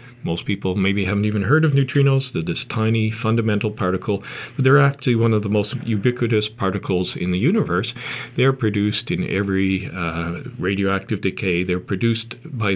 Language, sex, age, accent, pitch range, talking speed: English, male, 50-69, American, 95-125 Hz, 165 wpm